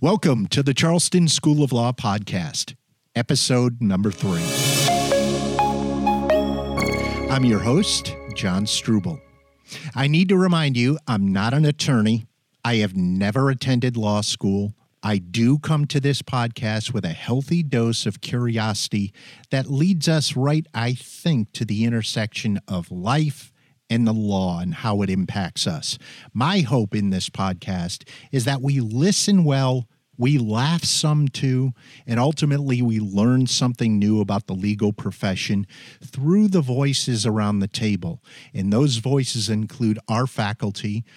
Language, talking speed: English, 145 wpm